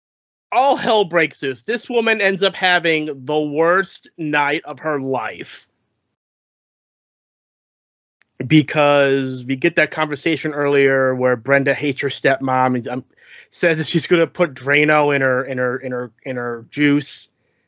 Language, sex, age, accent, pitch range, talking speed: English, male, 30-49, American, 135-155 Hz, 145 wpm